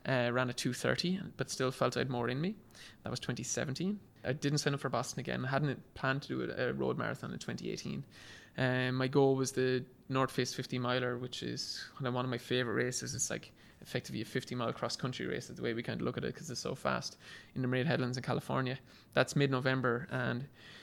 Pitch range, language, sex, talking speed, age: 125-135 Hz, English, male, 230 wpm, 20-39